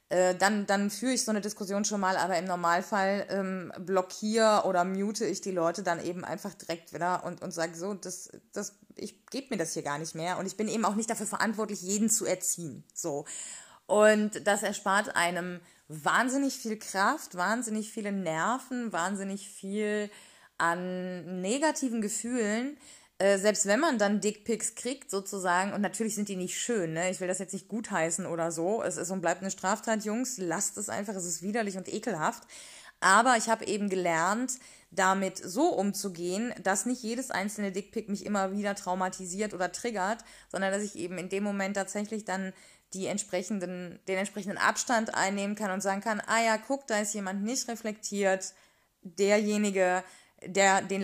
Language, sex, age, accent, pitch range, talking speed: German, female, 20-39, German, 185-215 Hz, 180 wpm